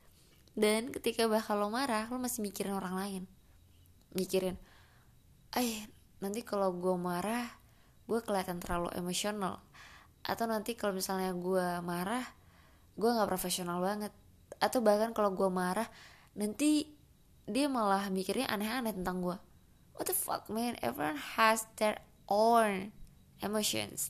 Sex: female